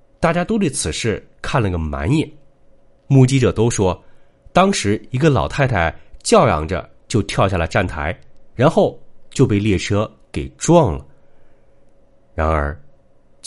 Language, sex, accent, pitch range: Chinese, male, native, 95-140 Hz